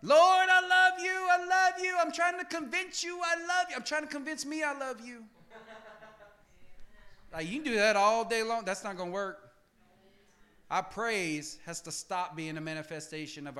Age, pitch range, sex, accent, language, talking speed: 30-49, 175-265 Hz, male, American, English, 200 wpm